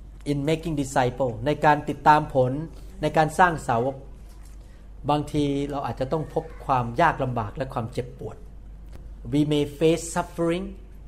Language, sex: Thai, male